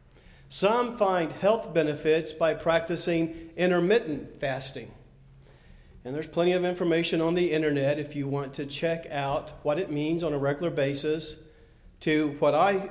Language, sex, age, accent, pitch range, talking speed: English, male, 40-59, American, 145-180 Hz, 150 wpm